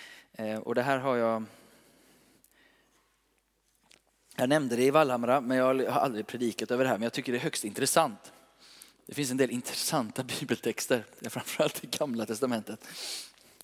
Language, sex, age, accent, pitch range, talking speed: Swedish, male, 20-39, native, 115-140 Hz, 155 wpm